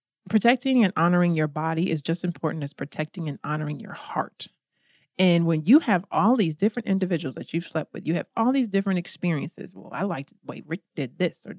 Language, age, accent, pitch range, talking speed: English, 40-59, American, 155-195 Hz, 210 wpm